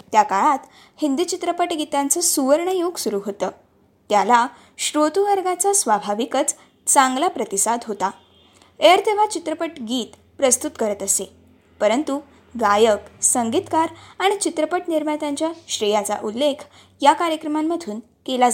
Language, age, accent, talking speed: Marathi, 20-39, native, 95 wpm